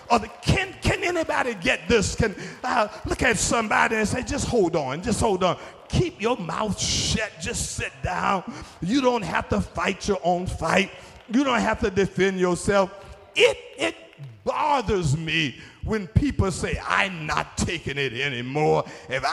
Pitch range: 160-230 Hz